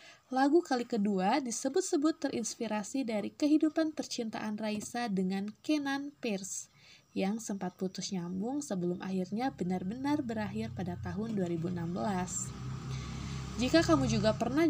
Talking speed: 110 wpm